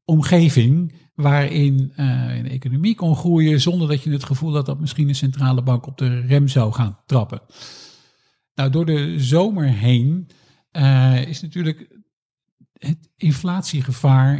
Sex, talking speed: male, 140 wpm